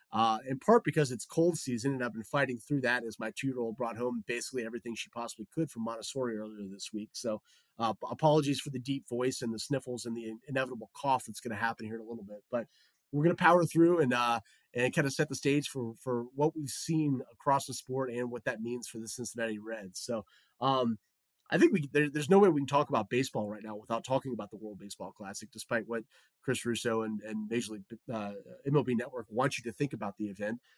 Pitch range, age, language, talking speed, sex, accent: 115-140 Hz, 30-49, English, 240 wpm, male, American